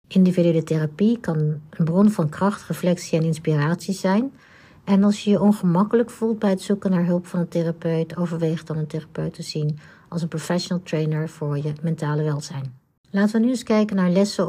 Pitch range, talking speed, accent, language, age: 160-195 Hz, 190 wpm, Dutch, Dutch, 60-79